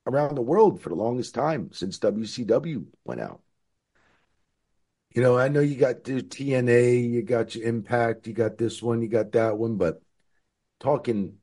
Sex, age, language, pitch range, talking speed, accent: male, 50-69, English, 100-135 Hz, 175 wpm, American